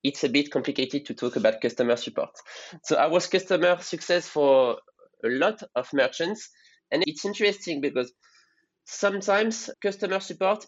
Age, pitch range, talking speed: 20-39, 140-175 Hz, 145 wpm